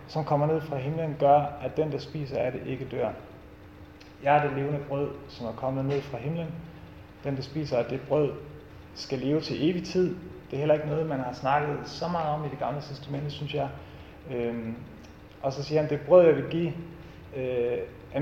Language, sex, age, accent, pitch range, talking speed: Danish, male, 30-49, native, 120-155 Hz, 215 wpm